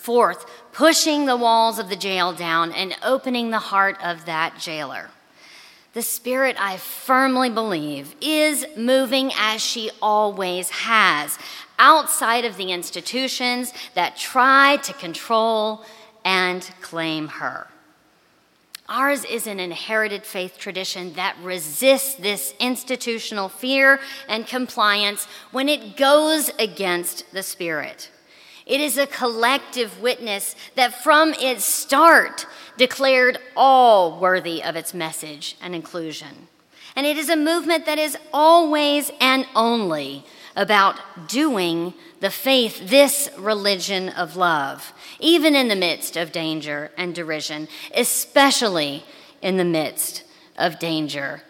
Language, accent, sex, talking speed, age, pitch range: English, American, female, 120 wpm, 40-59, 180-265 Hz